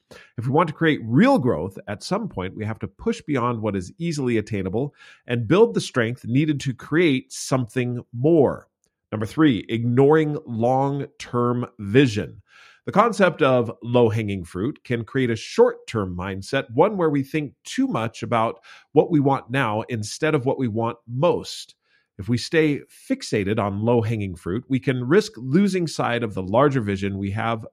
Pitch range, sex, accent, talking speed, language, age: 110-150 Hz, male, American, 170 wpm, English, 40-59